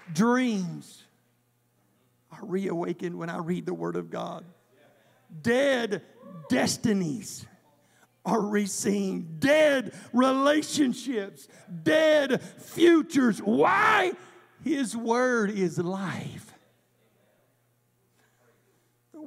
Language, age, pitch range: English, 60-79, 170-225 Hz